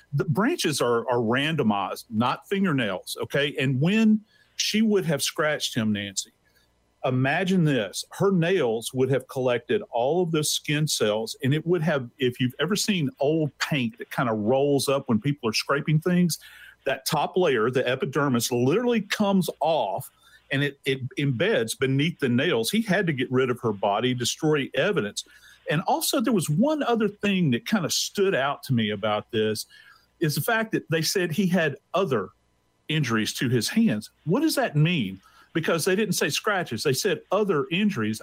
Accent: American